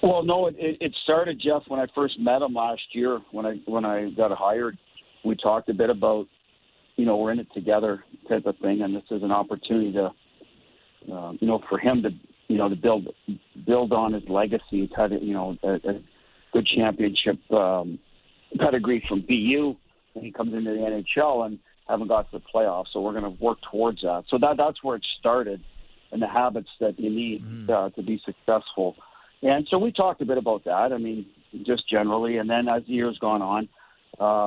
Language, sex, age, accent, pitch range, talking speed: English, male, 50-69, American, 100-125 Hz, 210 wpm